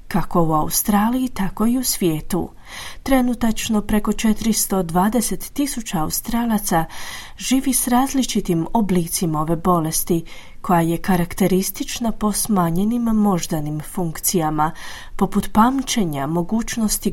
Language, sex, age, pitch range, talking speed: Croatian, female, 30-49, 175-225 Hz, 95 wpm